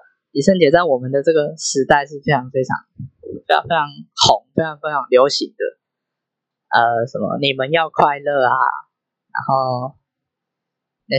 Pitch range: 140-230 Hz